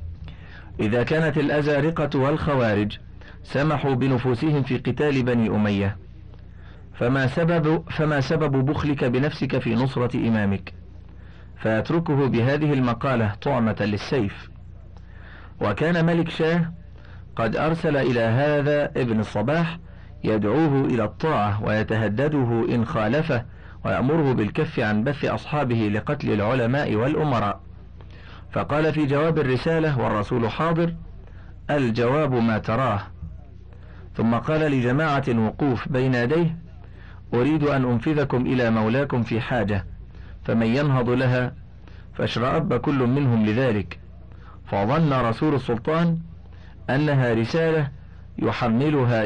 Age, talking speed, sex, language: 40-59, 100 wpm, male, Arabic